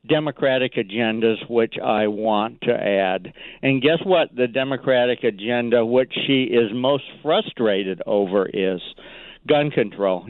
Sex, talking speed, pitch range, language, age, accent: male, 130 wpm, 115-140 Hz, English, 60-79, American